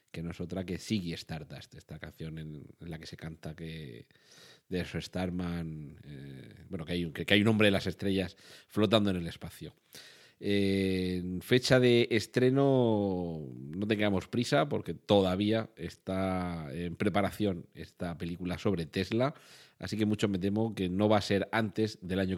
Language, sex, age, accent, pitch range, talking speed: Spanish, male, 40-59, Spanish, 90-105 Hz, 170 wpm